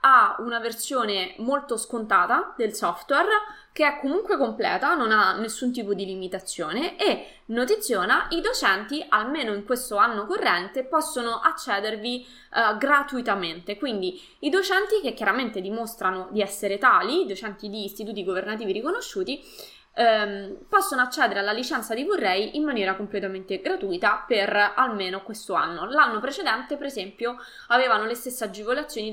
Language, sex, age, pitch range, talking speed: Italian, female, 20-39, 200-285 Hz, 140 wpm